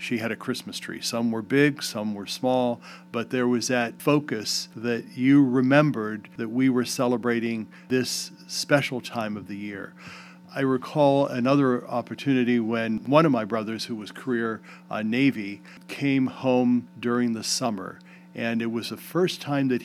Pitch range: 115-135 Hz